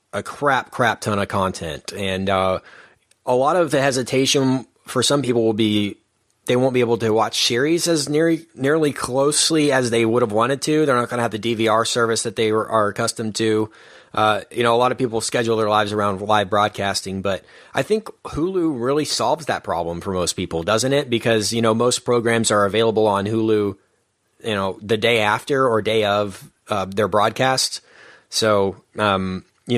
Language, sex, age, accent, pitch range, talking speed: English, male, 30-49, American, 100-125 Hz, 195 wpm